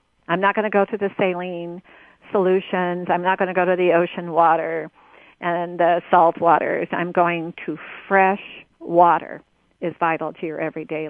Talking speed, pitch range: 175 wpm, 175-200 Hz